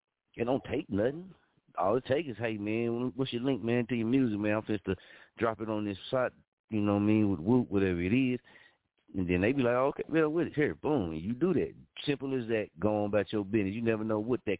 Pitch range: 100-135 Hz